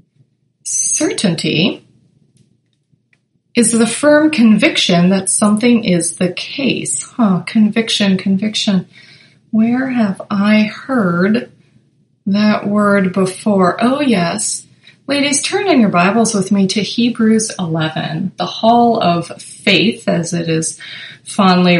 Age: 20-39